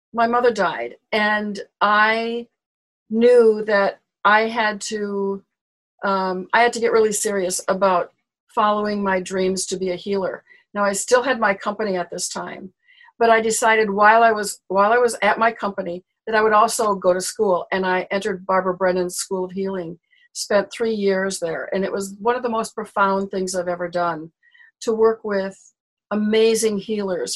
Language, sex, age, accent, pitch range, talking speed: English, female, 50-69, American, 190-225 Hz, 180 wpm